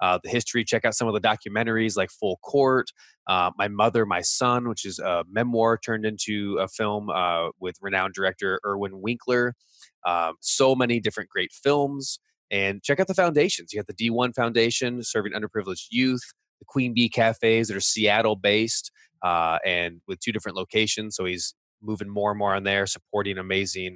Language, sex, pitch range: English, male, 95-115 Hz